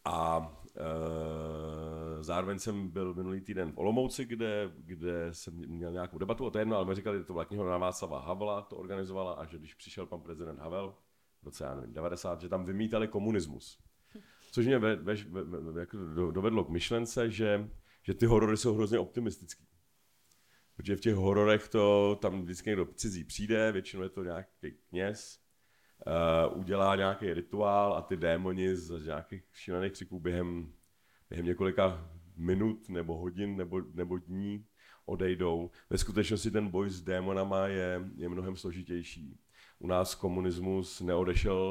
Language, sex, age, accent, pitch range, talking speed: Czech, male, 40-59, native, 85-100 Hz, 155 wpm